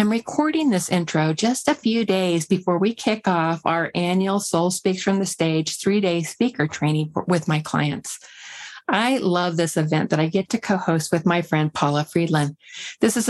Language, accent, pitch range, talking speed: English, American, 170-220 Hz, 185 wpm